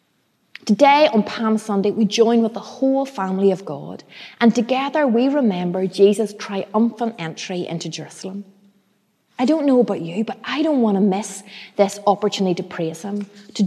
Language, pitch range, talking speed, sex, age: English, 195-250 Hz, 165 wpm, female, 30-49